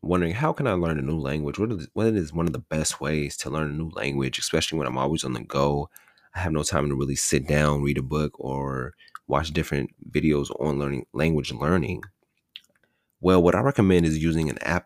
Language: English